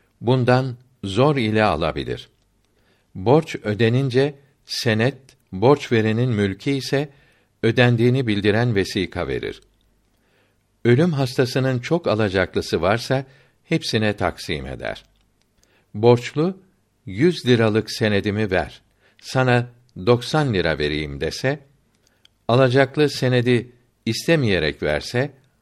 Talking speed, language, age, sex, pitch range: 85 wpm, Turkish, 60-79, male, 105-130 Hz